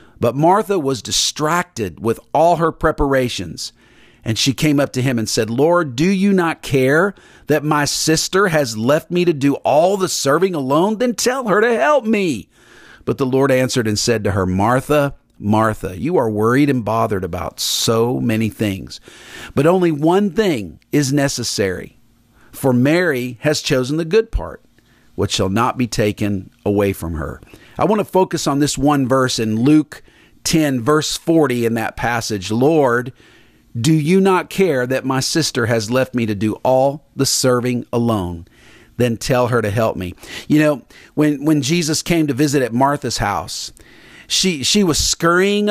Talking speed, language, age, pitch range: 175 wpm, English, 50-69, 120-165 Hz